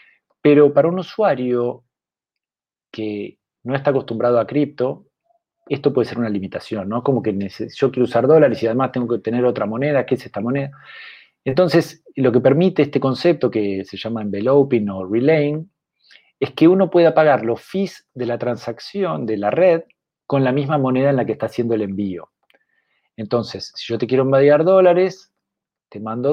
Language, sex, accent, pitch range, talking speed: Spanish, male, Argentinian, 110-150 Hz, 180 wpm